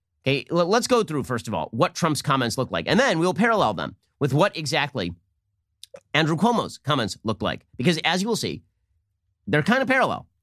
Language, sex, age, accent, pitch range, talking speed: English, male, 30-49, American, 115-180 Hz, 195 wpm